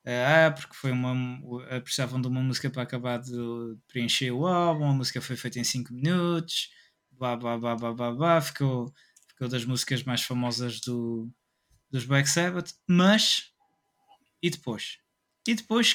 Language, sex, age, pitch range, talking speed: Portuguese, male, 20-39, 125-160 Hz, 135 wpm